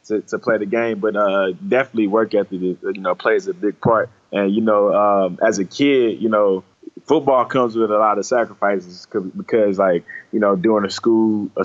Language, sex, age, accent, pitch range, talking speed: English, male, 20-39, American, 95-110 Hz, 210 wpm